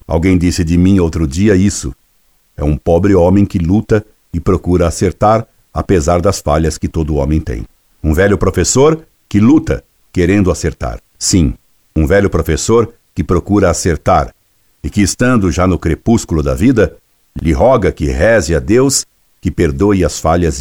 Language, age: Portuguese, 60-79